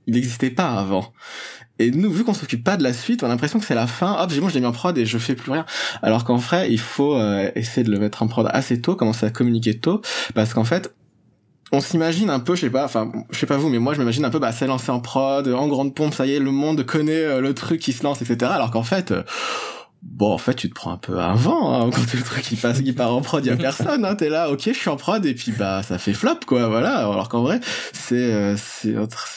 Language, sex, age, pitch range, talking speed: French, male, 20-39, 115-145 Hz, 290 wpm